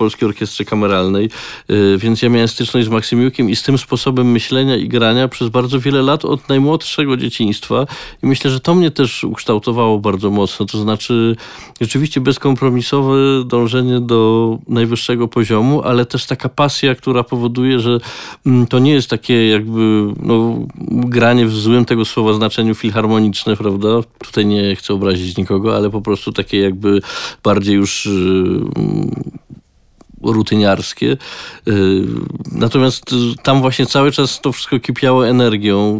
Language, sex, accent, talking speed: Polish, male, native, 145 wpm